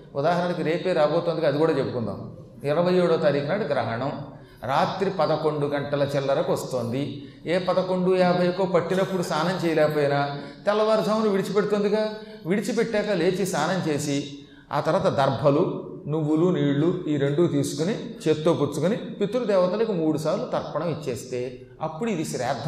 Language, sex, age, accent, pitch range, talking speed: Telugu, male, 40-59, native, 145-205 Hz, 120 wpm